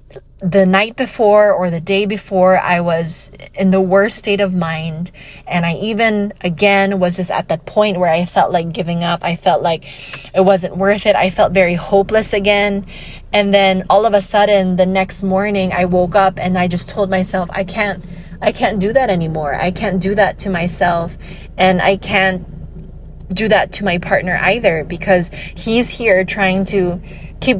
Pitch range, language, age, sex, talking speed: 175-200 Hz, English, 20-39, female, 190 wpm